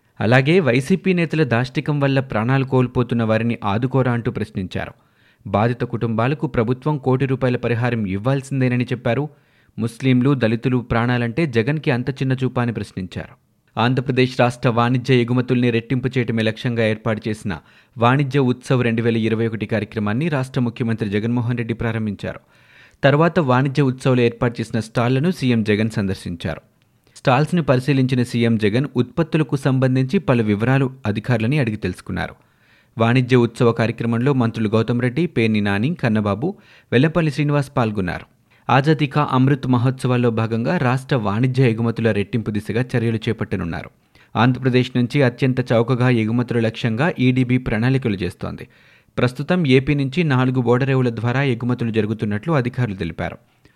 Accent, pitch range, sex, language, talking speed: native, 115-135 Hz, male, Telugu, 120 wpm